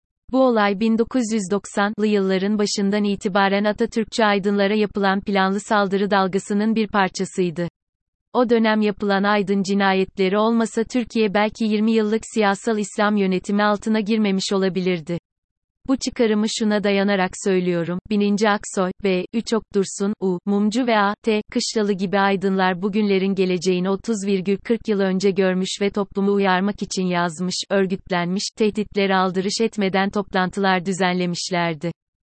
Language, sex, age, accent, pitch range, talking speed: Turkish, female, 30-49, native, 190-220 Hz, 120 wpm